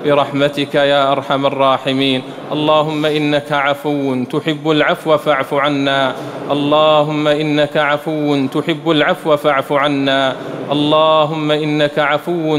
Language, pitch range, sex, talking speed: English, 140-155 Hz, male, 100 wpm